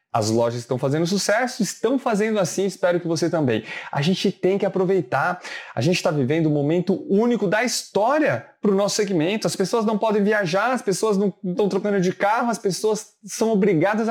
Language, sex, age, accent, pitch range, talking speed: Portuguese, male, 30-49, Brazilian, 170-225 Hz, 195 wpm